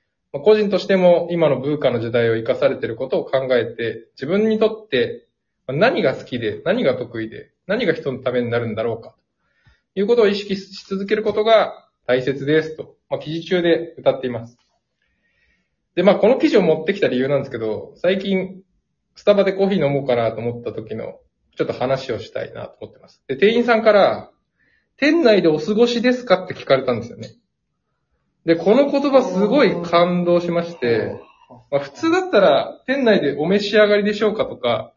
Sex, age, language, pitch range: male, 20-39, Japanese, 140-215 Hz